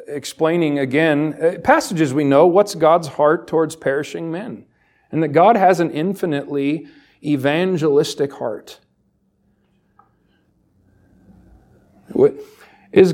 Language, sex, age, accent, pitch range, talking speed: English, male, 40-59, American, 135-200 Hz, 90 wpm